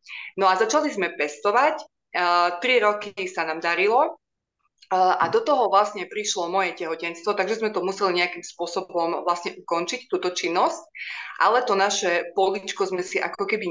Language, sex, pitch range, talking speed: Slovak, female, 180-215 Hz, 160 wpm